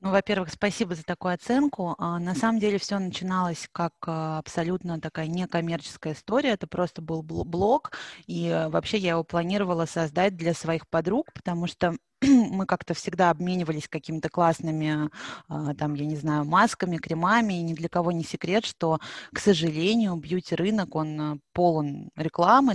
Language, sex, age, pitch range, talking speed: Russian, female, 20-39, 160-200 Hz, 150 wpm